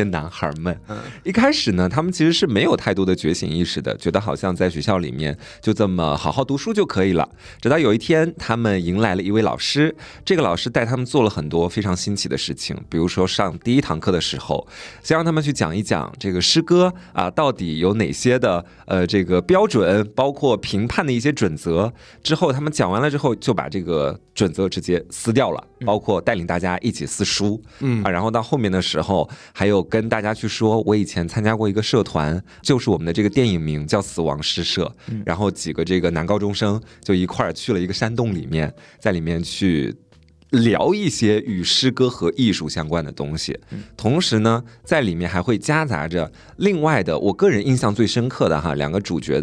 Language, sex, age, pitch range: Chinese, male, 20-39, 90-130 Hz